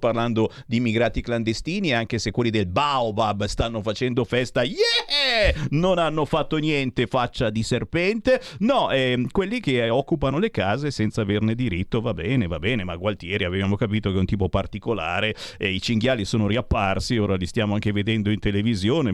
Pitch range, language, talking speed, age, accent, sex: 105-135 Hz, Italian, 170 wpm, 40-59, native, male